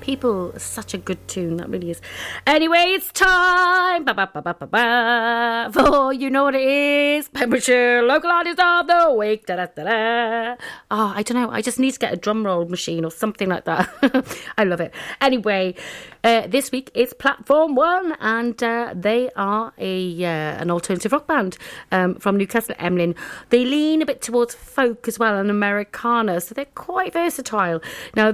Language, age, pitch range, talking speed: English, 40-59, 190-265 Hz, 190 wpm